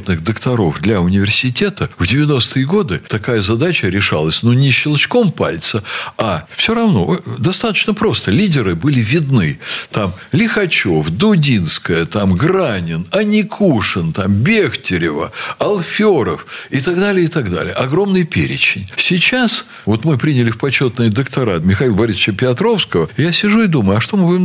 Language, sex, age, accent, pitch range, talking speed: Russian, male, 60-79, native, 120-190 Hz, 135 wpm